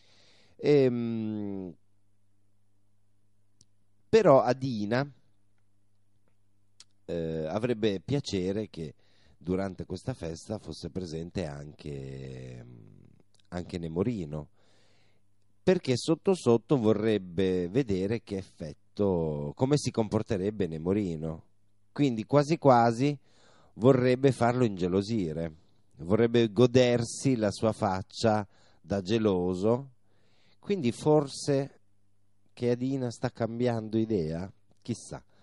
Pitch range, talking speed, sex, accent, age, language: 95-115 Hz, 80 wpm, male, native, 40-59, Italian